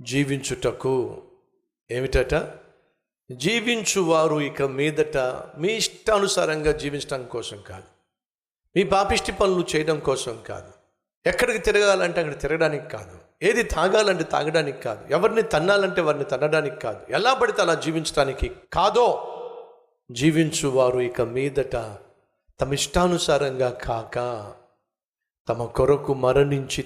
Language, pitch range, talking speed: Telugu, 140-200 Hz, 100 wpm